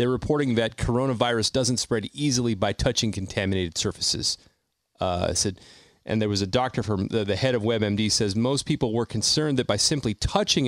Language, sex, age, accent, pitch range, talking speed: English, male, 30-49, American, 100-130 Hz, 190 wpm